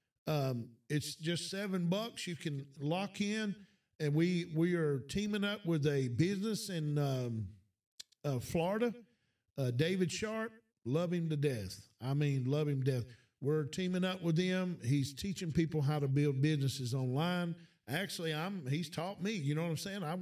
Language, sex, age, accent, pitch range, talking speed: English, male, 50-69, American, 135-180 Hz, 175 wpm